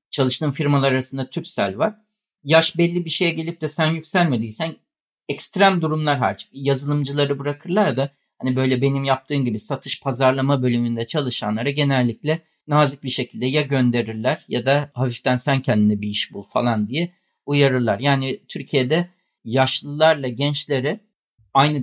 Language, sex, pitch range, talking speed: Turkish, male, 130-190 Hz, 135 wpm